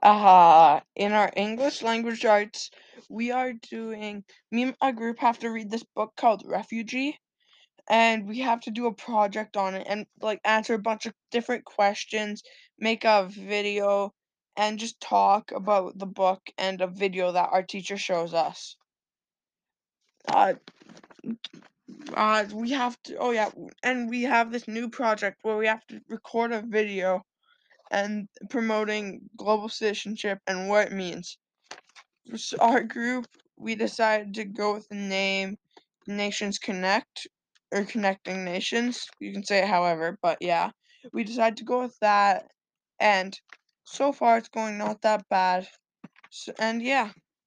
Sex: female